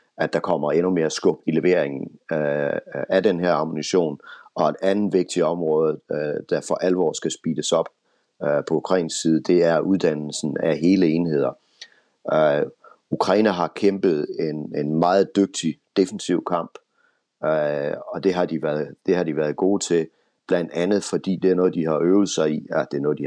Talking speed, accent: 190 wpm, native